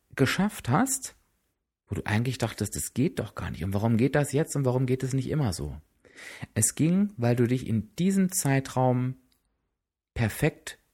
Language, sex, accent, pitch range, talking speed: German, male, German, 105-135 Hz, 175 wpm